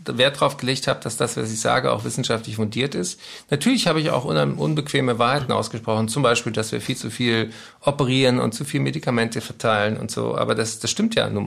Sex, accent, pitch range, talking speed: male, German, 115-140 Hz, 215 wpm